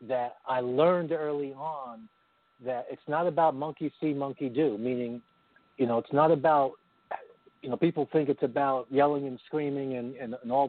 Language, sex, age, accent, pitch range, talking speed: English, male, 50-69, American, 120-155 Hz, 180 wpm